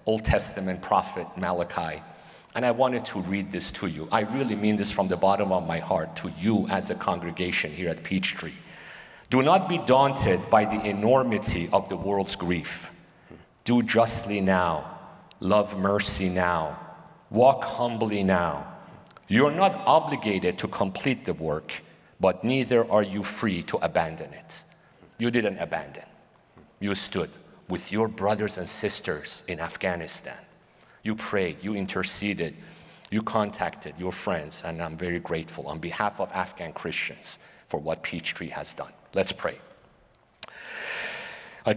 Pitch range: 90-115 Hz